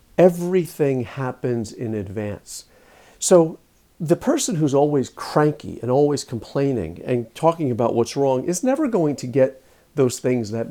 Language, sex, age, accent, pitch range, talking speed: English, male, 50-69, American, 110-145 Hz, 145 wpm